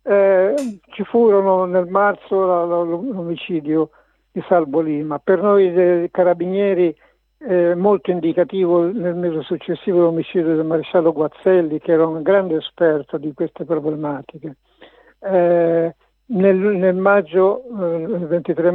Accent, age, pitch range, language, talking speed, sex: native, 60-79, 165-200 Hz, Italian, 130 wpm, male